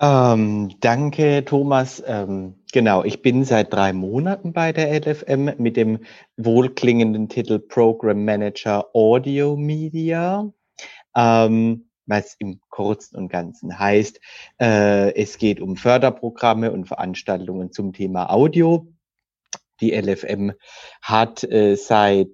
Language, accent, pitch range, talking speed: German, German, 100-130 Hz, 115 wpm